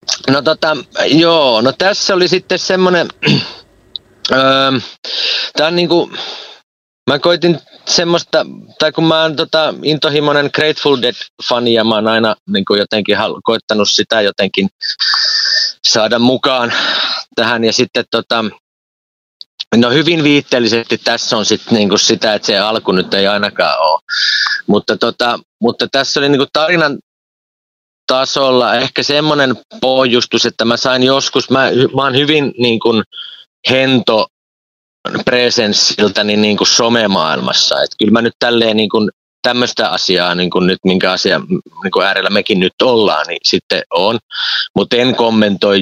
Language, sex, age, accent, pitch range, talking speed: Finnish, male, 30-49, native, 115-150 Hz, 120 wpm